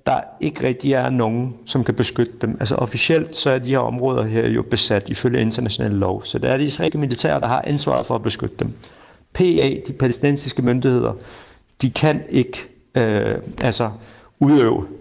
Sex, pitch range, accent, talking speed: male, 115-140 Hz, native, 180 wpm